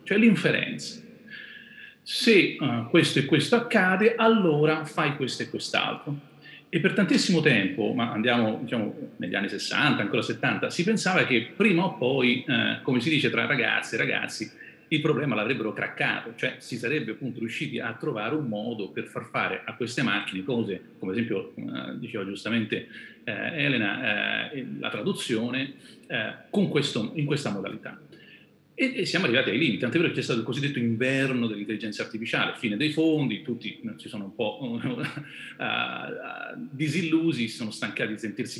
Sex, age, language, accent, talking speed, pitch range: male, 40-59, Italian, native, 160 wpm, 115-160 Hz